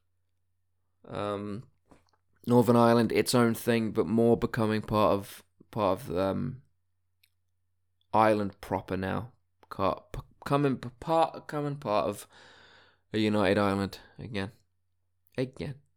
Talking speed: 105 wpm